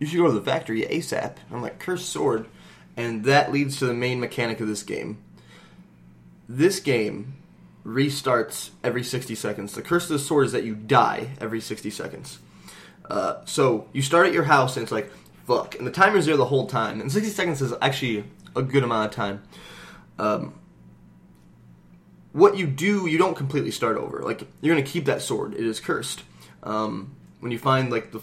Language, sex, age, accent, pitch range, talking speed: English, male, 20-39, American, 110-145 Hz, 195 wpm